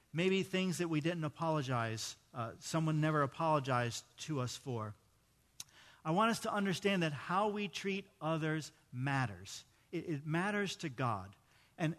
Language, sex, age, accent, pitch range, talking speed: English, male, 50-69, American, 135-195 Hz, 150 wpm